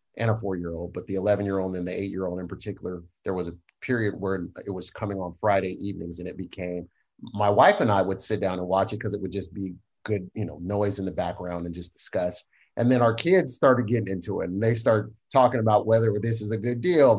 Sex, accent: male, American